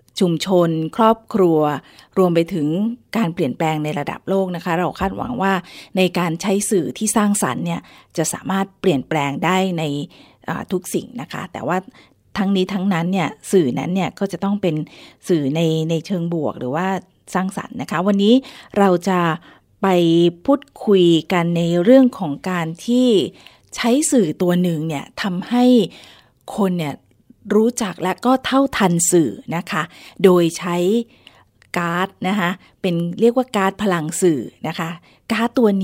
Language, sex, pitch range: Thai, female, 170-210 Hz